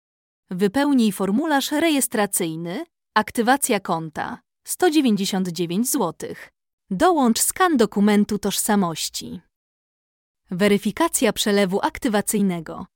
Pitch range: 195-265 Hz